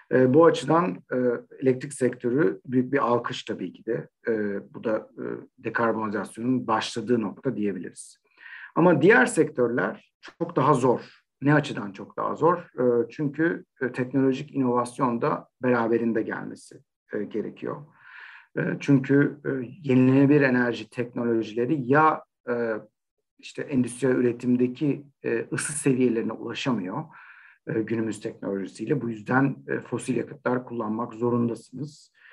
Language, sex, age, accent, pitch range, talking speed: Turkish, male, 50-69, native, 115-145 Hz, 100 wpm